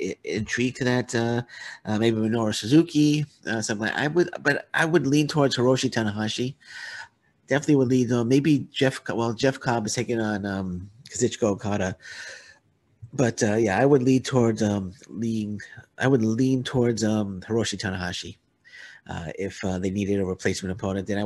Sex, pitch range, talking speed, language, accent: male, 95-115 Hz, 170 wpm, English, American